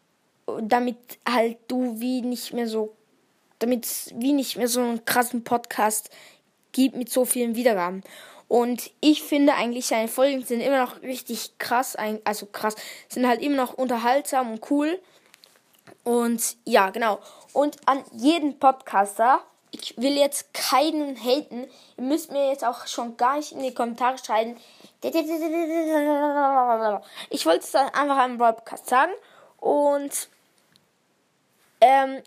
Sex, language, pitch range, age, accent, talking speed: female, English, 230-280 Hz, 10-29, German, 140 wpm